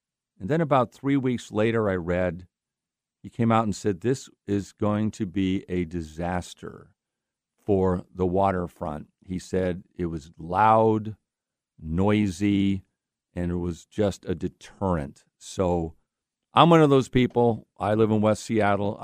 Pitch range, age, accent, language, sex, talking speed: 90-110 Hz, 50-69, American, English, male, 145 wpm